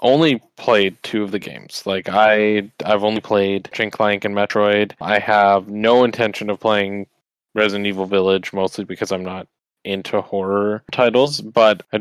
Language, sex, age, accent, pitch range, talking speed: English, male, 20-39, American, 95-115 Hz, 165 wpm